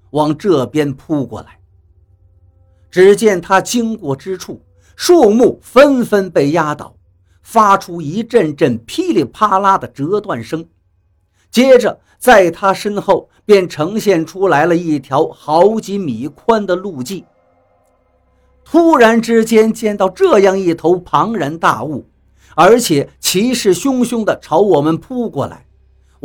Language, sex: Chinese, male